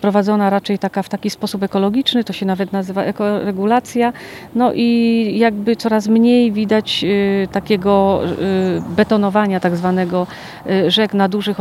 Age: 40-59